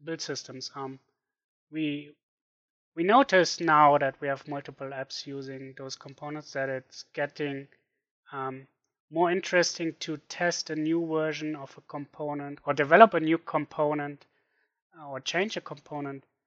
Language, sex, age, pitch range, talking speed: English, male, 30-49, 140-160 Hz, 140 wpm